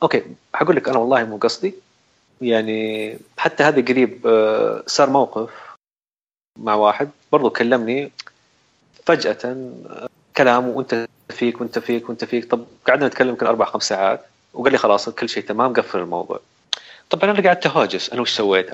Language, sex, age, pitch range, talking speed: Arabic, male, 30-49, 115-160 Hz, 150 wpm